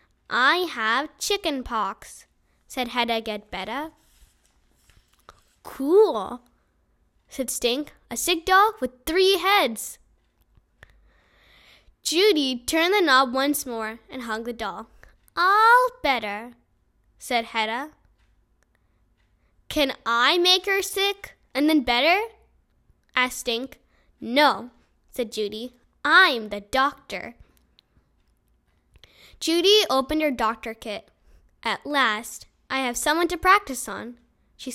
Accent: American